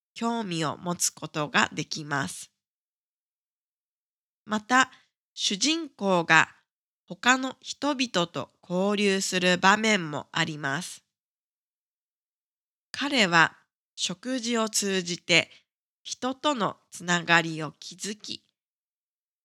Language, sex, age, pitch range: Japanese, female, 20-39, 170-235 Hz